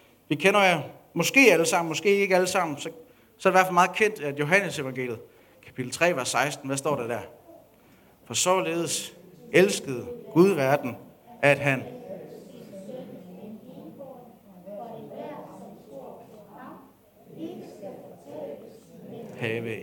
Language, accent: Danish, native